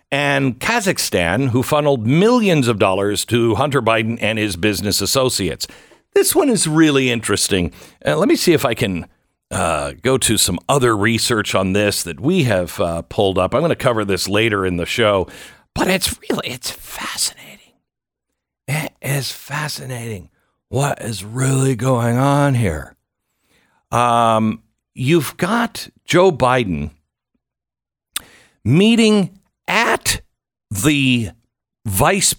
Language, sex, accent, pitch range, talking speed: English, male, American, 105-140 Hz, 135 wpm